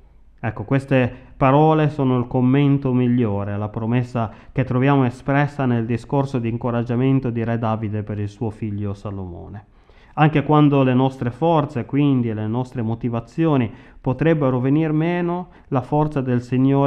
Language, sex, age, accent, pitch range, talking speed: Italian, male, 30-49, native, 110-135 Hz, 140 wpm